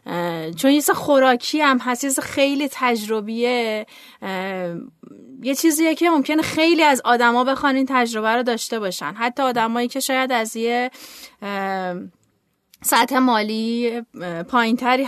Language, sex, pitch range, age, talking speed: Persian, female, 215-260 Hz, 30-49, 125 wpm